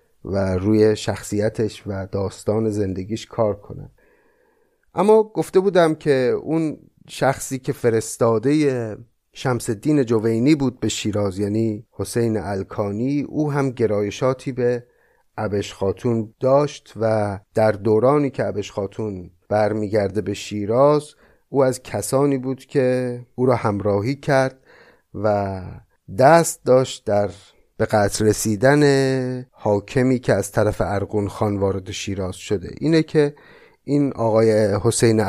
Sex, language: male, Persian